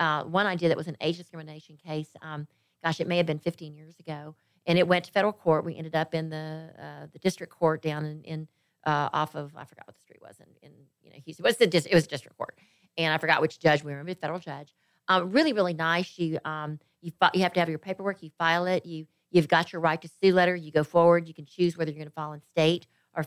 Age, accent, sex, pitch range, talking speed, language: 40-59, American, female, 155-175 Hz, 270 wpm, English